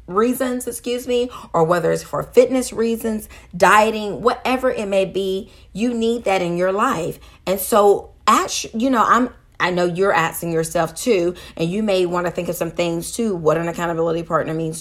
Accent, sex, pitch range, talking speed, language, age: American, female, 175-220 Hz, 190 wpm, English, 30-49